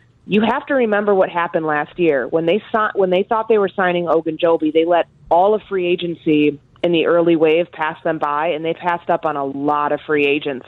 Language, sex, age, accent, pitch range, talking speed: English, female, 30-49, American, 155-180 Hz, 235 wpm